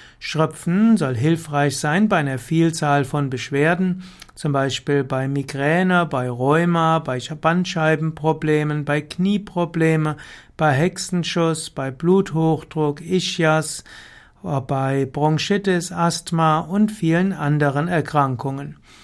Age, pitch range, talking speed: 60-79, 145-180 Hz, 100 wpm